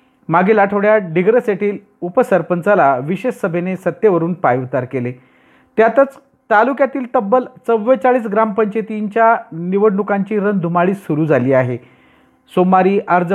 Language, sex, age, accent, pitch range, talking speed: Marathi, male, 40-59, native, 165-220 Hz, 95 wpm